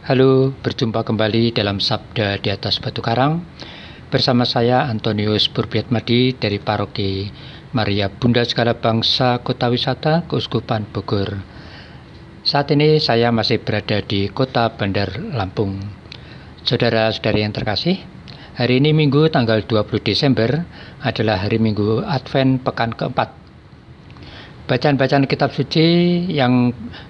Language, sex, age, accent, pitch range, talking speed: Indonesian, male, 50-69, native, 105-130 Hz, 115 wpm